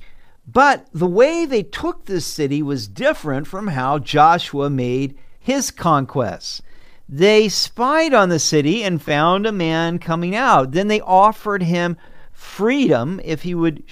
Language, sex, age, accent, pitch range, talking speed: English, male, 50-69, American, 145-205 Hz, 145 wpm